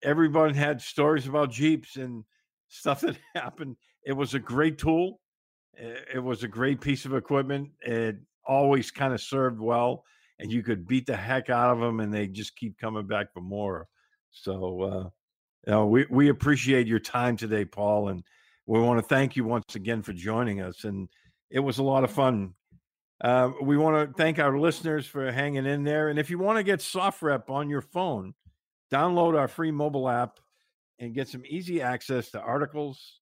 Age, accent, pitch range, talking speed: 50-69, American, 115-145 Hz, 190 wpm